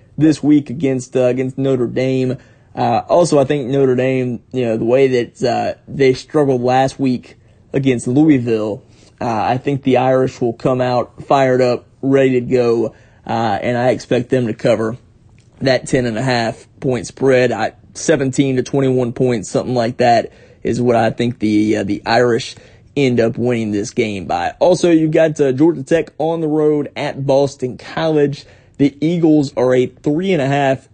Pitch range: 120-140 Hz